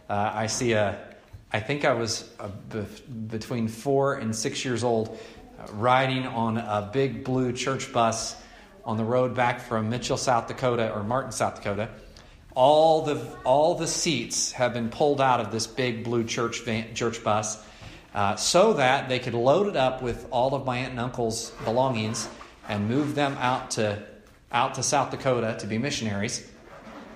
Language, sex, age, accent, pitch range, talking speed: English, male, 40-59, American, 115-140 Hz, 180 wpm